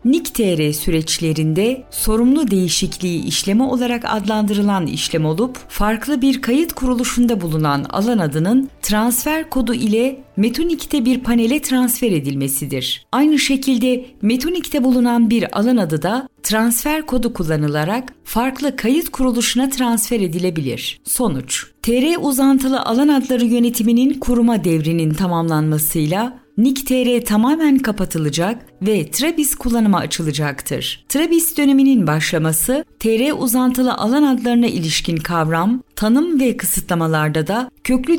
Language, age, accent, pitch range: Turkish, 40-59, native, 180-255 Hz